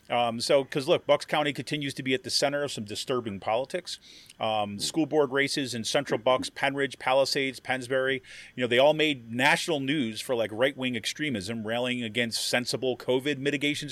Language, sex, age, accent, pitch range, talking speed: English, male, 30-49, American, 125-155 Hz, 185 wpm